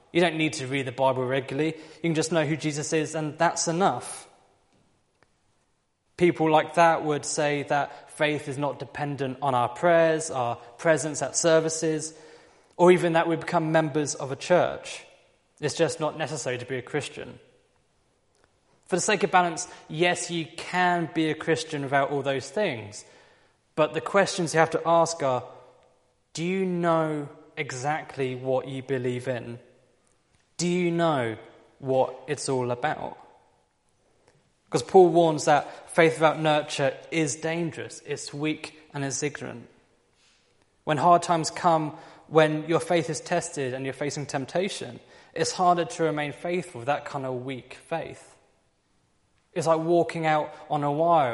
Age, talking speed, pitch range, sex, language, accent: 20-39, 160 wpm, 135-165 Hz, male, English, British